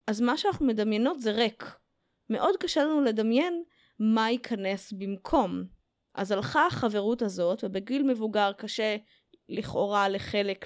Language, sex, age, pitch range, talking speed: Hebrew, female, 20-39, 200-265 Hz, 125 wpm